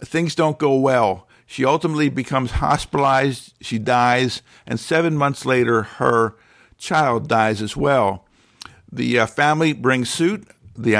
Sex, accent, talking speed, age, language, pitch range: male, American, 135 wpm, 50-69, English, 110-130 Hz